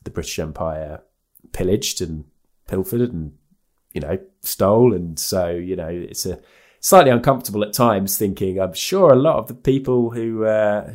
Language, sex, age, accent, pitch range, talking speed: English, male, 20-39, British, 85-115 Hz, 165 wpm